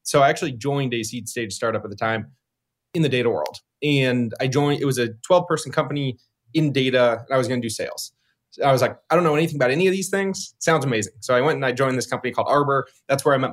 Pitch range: 120-155 Hz